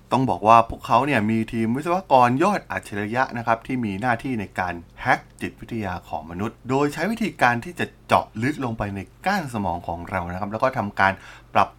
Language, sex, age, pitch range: Thai, male, 20-39, 95-135 Hz